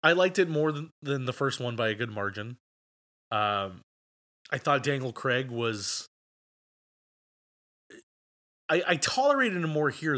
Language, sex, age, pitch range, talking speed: English, male, 20-39, 110-150 Hz, 145 wpm